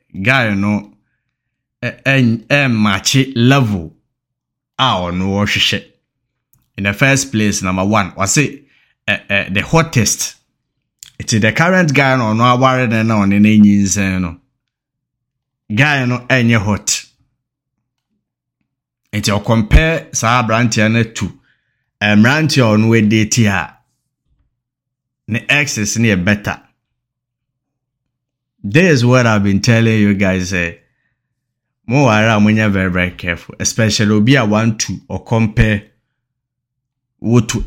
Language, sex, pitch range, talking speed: English, male, 105-130 Hz, 135 wpm